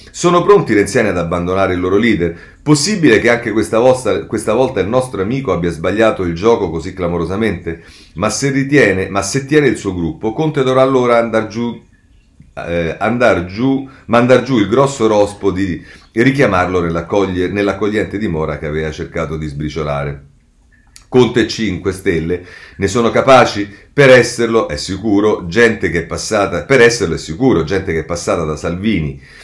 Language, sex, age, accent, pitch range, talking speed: Italian, male, 40-59, native, 85-120 Hz, 165 wpm